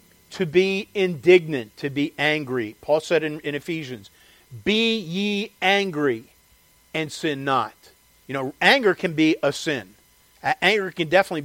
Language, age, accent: English, 50-69, American